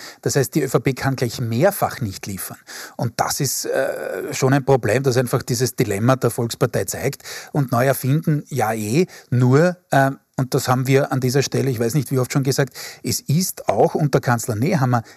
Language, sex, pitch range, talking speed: German, male, 125-155 Hz, 200 wpm